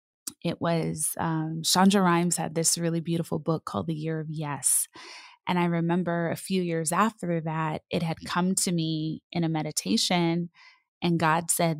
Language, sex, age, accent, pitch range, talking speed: English, female, 20-39, American, 160-195 Hz, 175 wpm